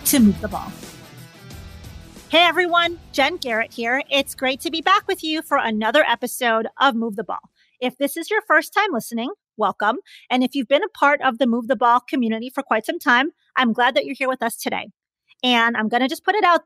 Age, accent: 30-49, American